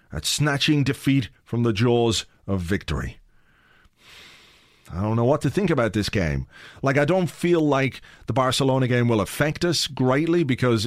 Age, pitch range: 40-59, 110-145 Hz